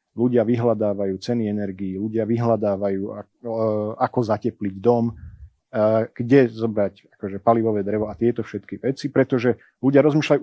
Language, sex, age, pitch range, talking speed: Slovak, male, 40-59, 110-140 Hz, 125 wpm